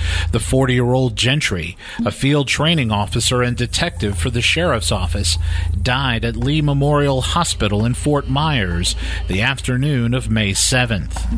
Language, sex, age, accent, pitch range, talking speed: English, male, 50-69, American, 95-130 Hz, 135 wpm